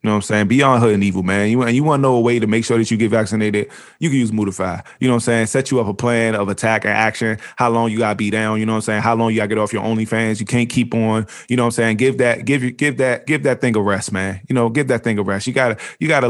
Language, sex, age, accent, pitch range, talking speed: English, male, 20-39, American, 115-160 Hz, 345 wpm